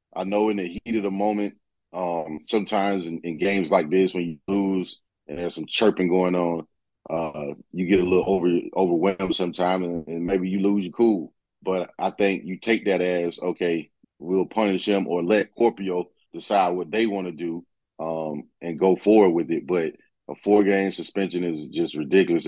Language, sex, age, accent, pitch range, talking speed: English, male, 30-49, American, 85-105 Hz, 190 wpm